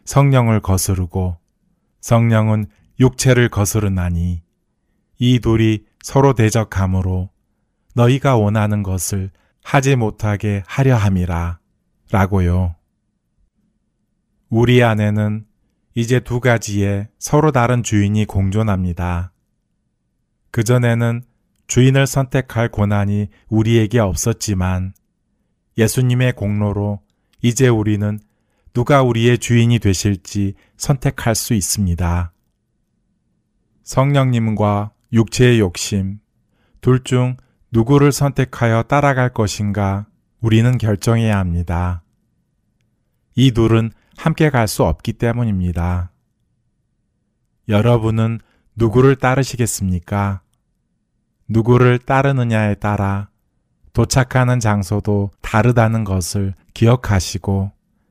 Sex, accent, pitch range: male, native, 100-120 Hz